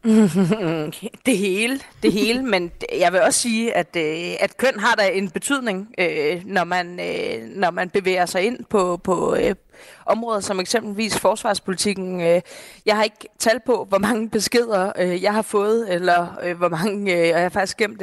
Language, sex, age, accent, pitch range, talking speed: English, female, 30-49, Danish, 180-230 Hz, 160 wpm